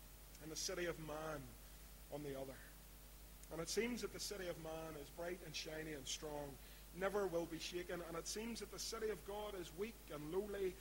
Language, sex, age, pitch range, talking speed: English, male, 40-59, 150-185 Hz, 210 wpm